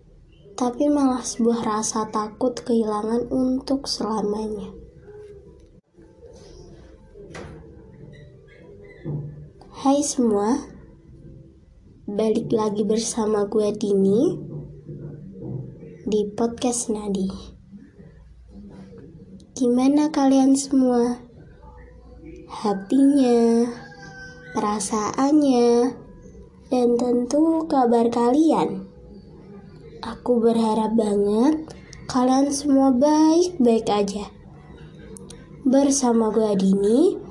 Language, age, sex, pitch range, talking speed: English, 20-39, male, 210-270 Hz, 60 wpm